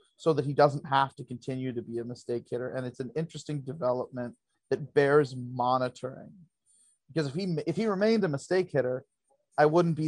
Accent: American